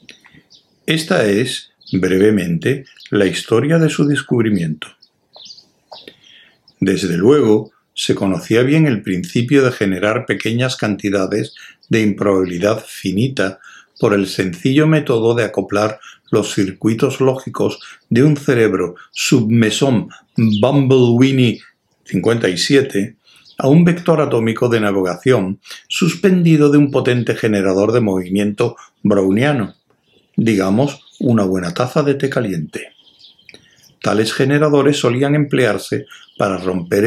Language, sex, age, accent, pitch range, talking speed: Spanish, male, 60-79, Spanish, 100-140 Hz, 105 wpm